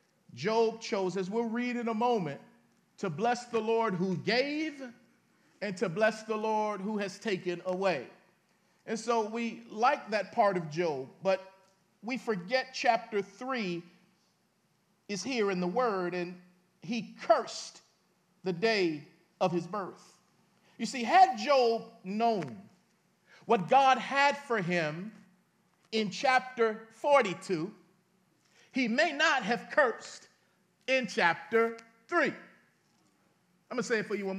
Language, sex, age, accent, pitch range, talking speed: English, male, 50-69, American, 190-270 Hz, 135 wpm